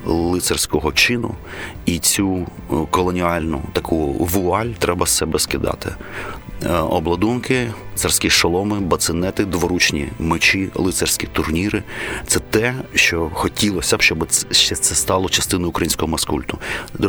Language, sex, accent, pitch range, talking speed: Ukrainian, male, native, 80-95 Hz, 110 wpm